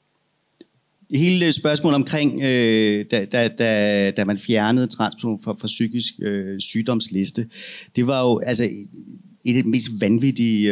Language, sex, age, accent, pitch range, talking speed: Danish, male, 30-49, native, 105-125 Hz, 125 wpm